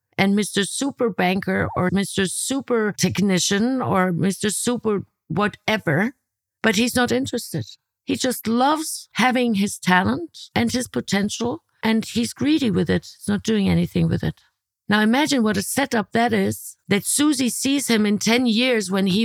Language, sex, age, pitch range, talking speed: English, female, 50-69, 180-235 Hz, 160 wpm